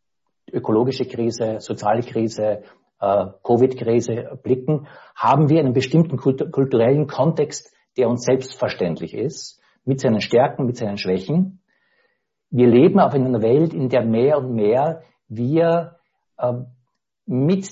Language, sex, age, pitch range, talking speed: English, male, 60-79, 120-155 Hz, 130 wpm